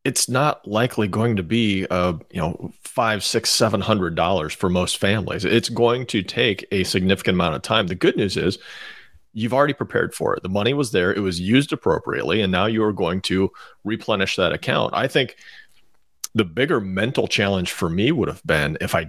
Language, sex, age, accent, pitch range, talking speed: English, male, 40-59, American, 95-115 Hz, 200 wpm